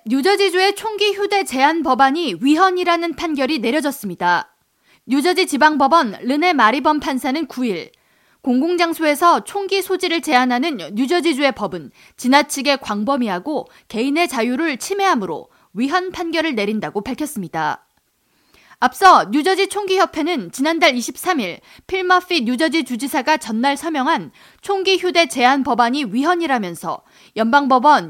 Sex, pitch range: female, 255-350 Hz